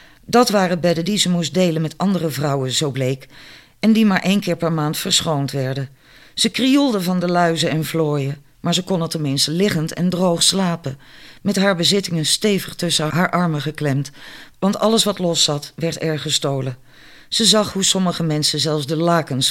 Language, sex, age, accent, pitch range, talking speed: Dutch, female, 50-69, Dutch, 150-185 Hz, 190 wpm